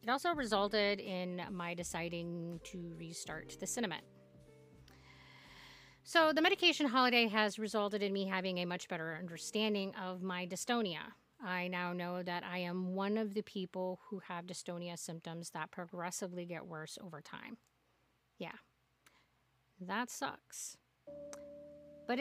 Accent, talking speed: American, 135 wpm